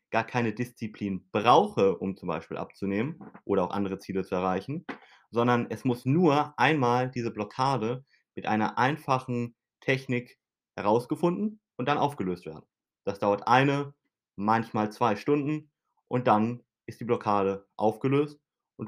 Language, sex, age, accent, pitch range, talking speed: German, male, 30-49, German, 105-130 Hz, 135 wpm